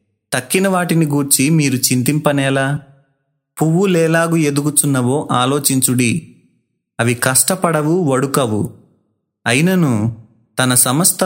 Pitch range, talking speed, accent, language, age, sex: 120-150 Hz, 75 wpm, native, Telugu, 30-49, male